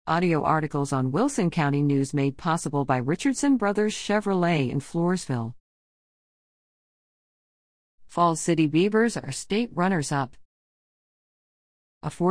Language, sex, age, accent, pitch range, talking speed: English, female, 50-69, American, 145-205 Hz, 100 wpm